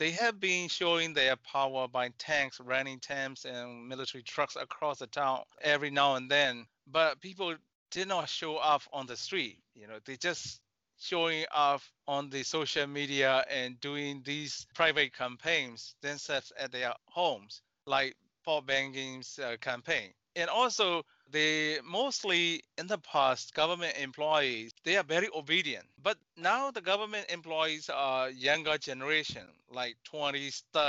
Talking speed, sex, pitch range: 150 wpm, male, 135-165 Hz